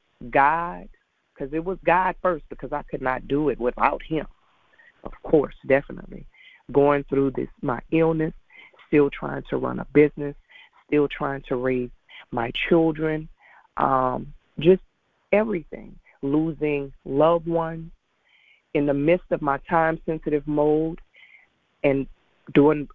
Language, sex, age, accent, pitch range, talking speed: English, female, 40-59, American, 130-160 Hz, 130 wpm